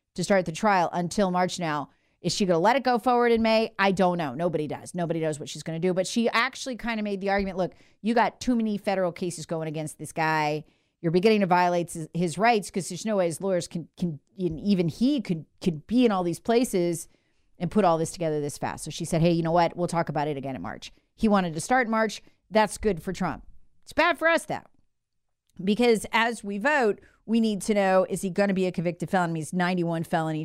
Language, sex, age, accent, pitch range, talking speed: English, female, 40-59, American, 165-215 Hz, 250 wpm